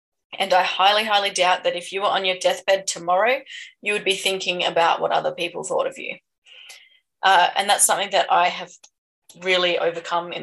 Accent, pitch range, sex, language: Australian, 175-210 Hz, female, English